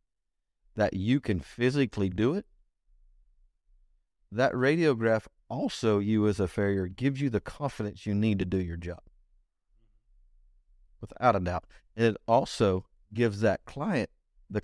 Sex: male